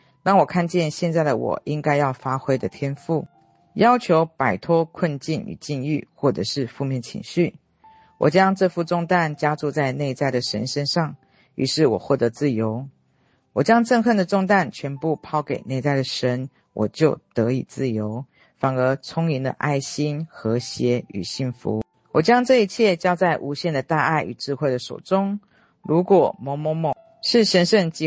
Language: Chinese